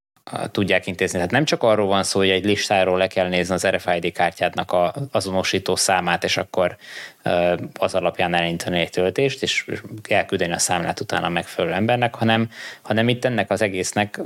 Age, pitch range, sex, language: 20-39, 90-105 Hz, male, Hungarian